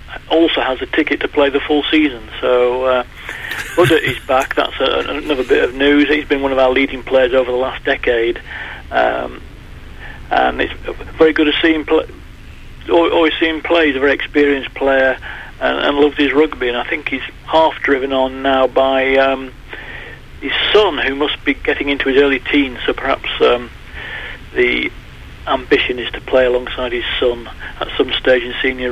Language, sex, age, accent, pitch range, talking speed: English, male, 40-59, British, 135-160 Hz, 185 wpm